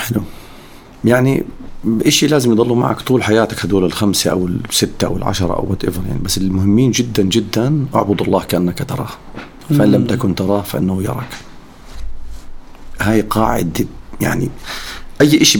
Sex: male